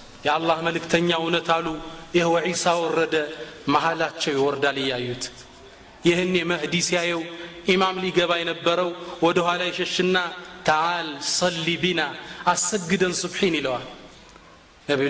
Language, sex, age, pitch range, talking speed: Amharic, male, 30-49, 140-170 Hz, 120 wpm